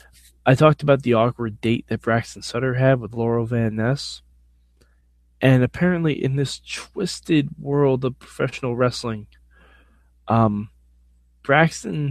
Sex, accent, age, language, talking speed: male, American, 20-39, English, 125 wpm